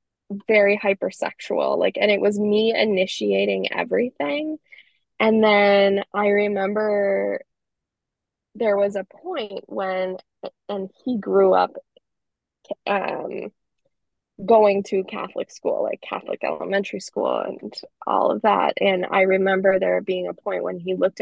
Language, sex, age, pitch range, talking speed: English, female, 10-29, 190-230 Hz, 125 wpm